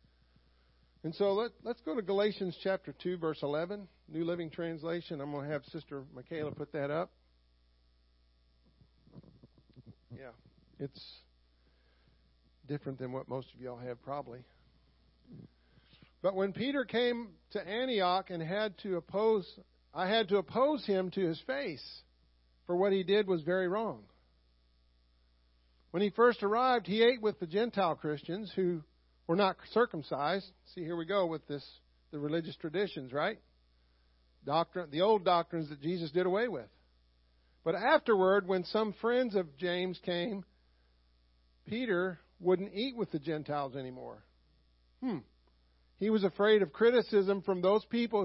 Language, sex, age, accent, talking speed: English, male, 50-69, American, 140 wpm